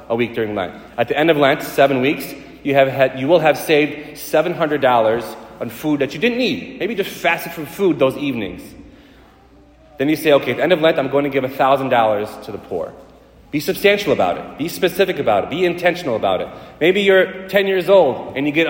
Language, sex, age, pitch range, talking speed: English, male, 30-49, 120-165 Hz, 235 wpm